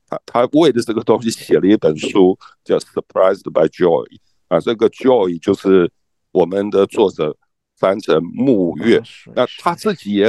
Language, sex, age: Chinese, male, 60-79